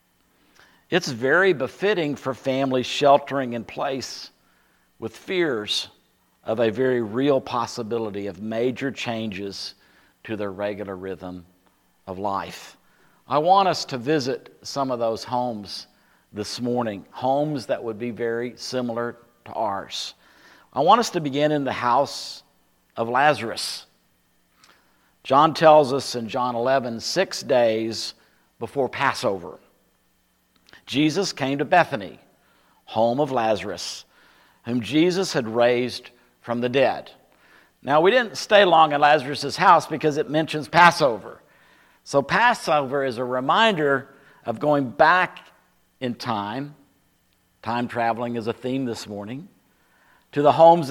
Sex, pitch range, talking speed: male, 115-145 Hz, 130 wpm